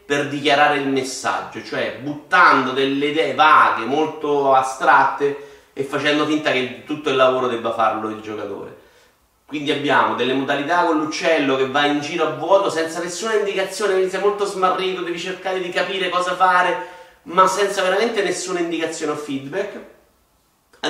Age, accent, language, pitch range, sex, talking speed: 30-49, native, Italian, 130-175 Hz, male, 160 wpm